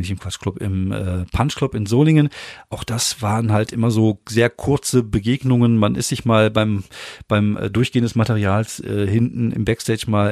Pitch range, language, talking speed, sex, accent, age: 110-130 Hz, German, 190 wpm, male, German, 40-59